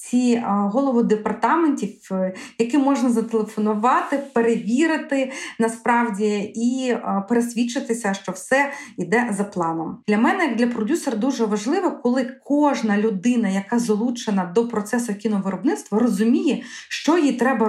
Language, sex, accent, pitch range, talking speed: Ukrainian, female, native, 210-260 Hz, 110 wpm